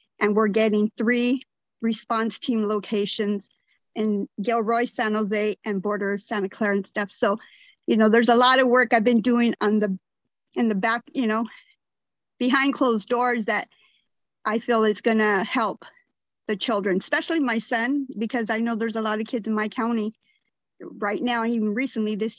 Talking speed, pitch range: 175 wpm, 210-240 Hz